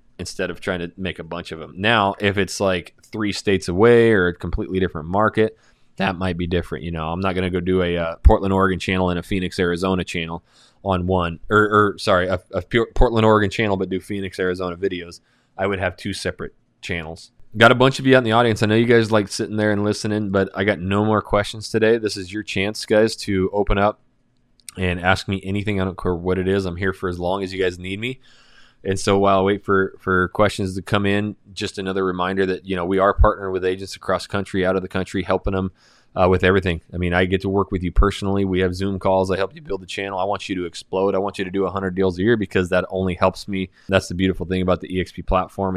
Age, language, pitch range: 20-39, English, 90-105 Hz